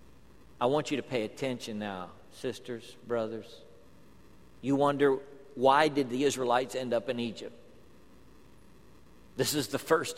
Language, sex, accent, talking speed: English, male, American, 135 wpm